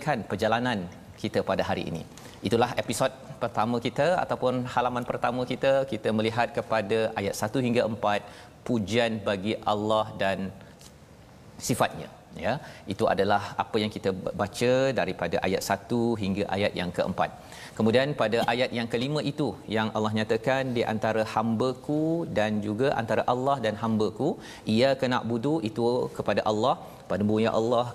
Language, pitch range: Malayalam, 105-125 Hz